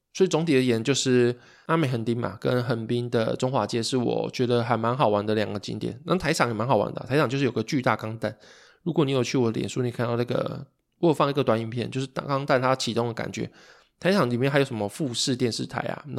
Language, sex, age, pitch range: Chinese, male, 20-39, 115-140 Hz